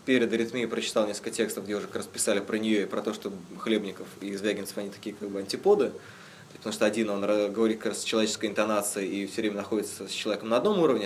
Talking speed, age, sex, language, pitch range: 230 wpm, 20-39, male, Russian, 105-125 Hz